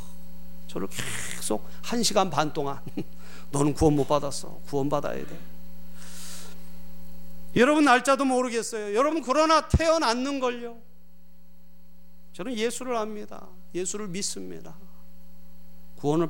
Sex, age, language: male, 40-59, Korean